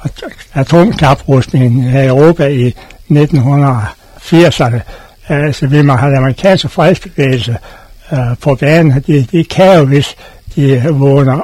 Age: 60-79